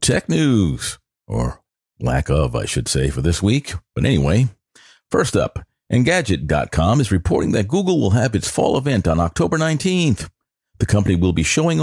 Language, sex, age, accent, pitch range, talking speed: English, male, 50-69, American, 85-130 Hz, 165 wpm